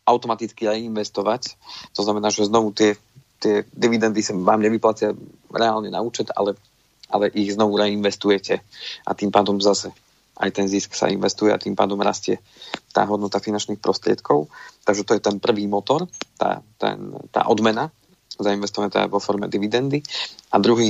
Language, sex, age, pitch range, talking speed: Slovak, male, 40-59, 105-110 Hz, 155 wpm